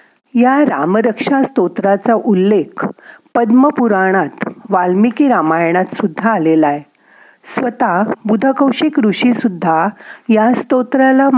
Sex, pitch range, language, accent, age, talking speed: female, 185-255 Hz, Marathi, native, 50-69, 85 wpm